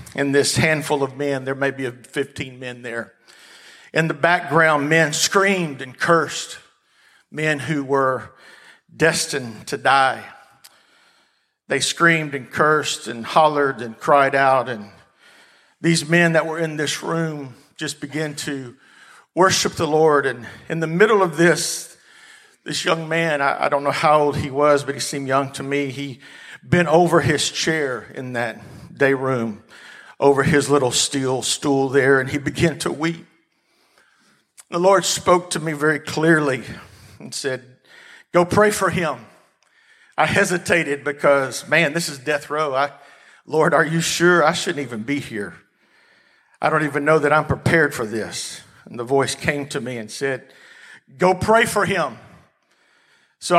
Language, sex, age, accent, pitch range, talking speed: English, male, 50-69, American, 135-165 Hz, 160 wpm